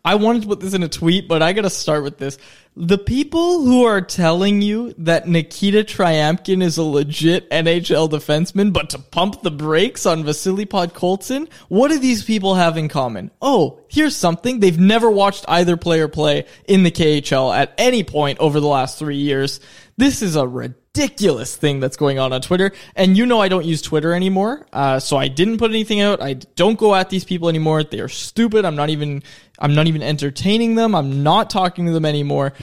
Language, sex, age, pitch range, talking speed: English, male, 20-39, 150-200 Hz, 210 wpm